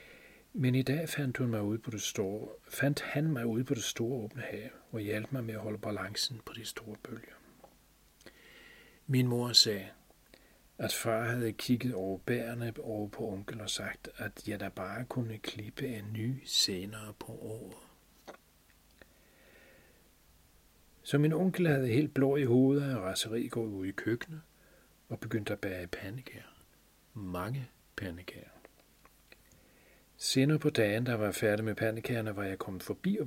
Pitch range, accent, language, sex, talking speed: 105-125 Hz, native, Danish, male, 160 wpm